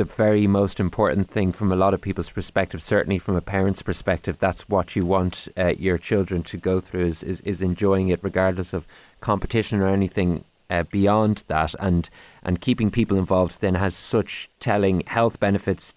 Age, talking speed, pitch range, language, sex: 20-39, 190 wpm, 95-120 Hz, English, male